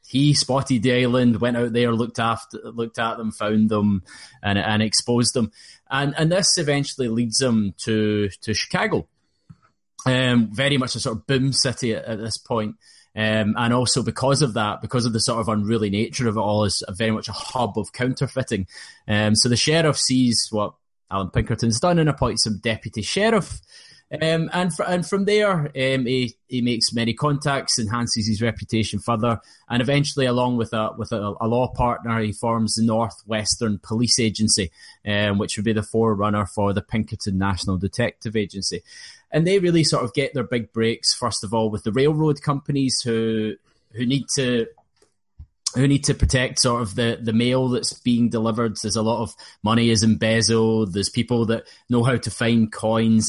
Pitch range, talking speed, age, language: 110-125 Hz, 190 wpm, 20-39, English